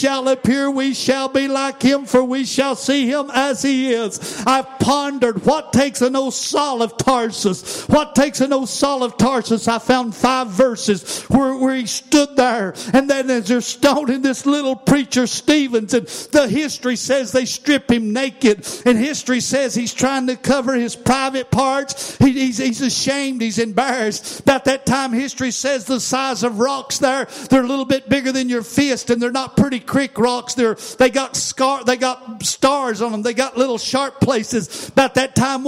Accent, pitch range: American, 240-270 Hz